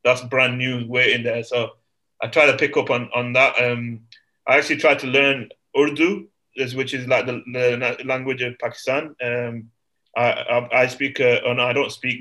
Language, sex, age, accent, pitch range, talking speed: English, male, 20-39, British, 120-130 Hz, 200 wpm